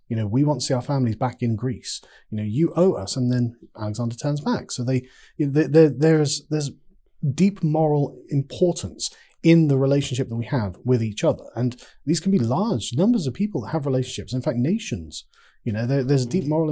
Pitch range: 125-165 Hz